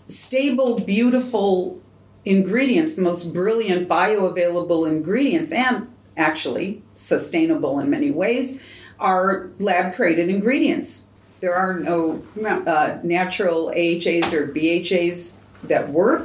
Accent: American